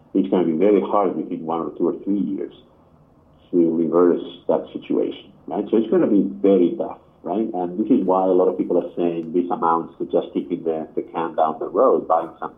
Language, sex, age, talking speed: English, male, 50-69, 235 wpm